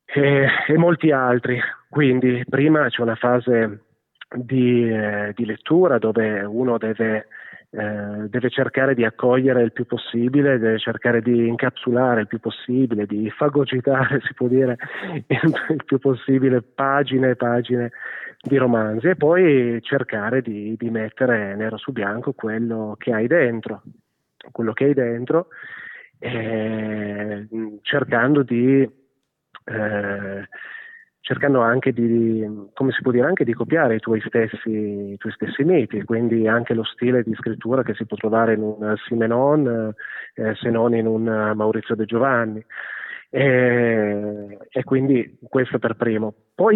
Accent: native